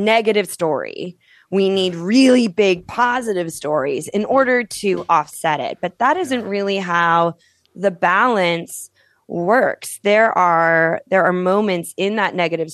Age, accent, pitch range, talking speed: 20-39, American, 165-205 Hz, 135 wpm